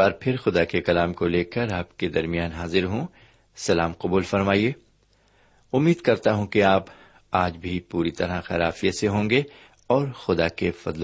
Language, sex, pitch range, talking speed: Urdu, male, 90-120 Hz, 180 wpm